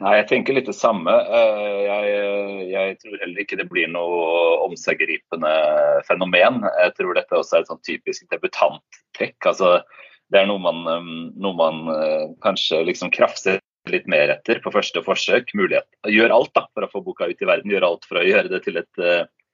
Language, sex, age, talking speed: English, male, 30-49, 175 wpm